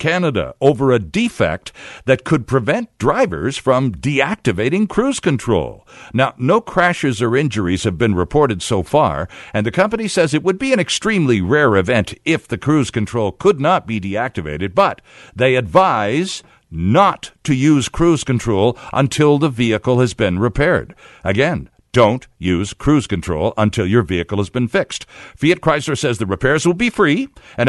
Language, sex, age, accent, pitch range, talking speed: English, male, 60-79, American, 110-175 Hz, 165 wpm